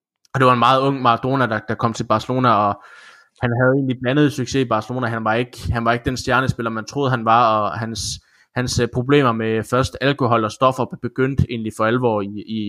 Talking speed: 220 wpm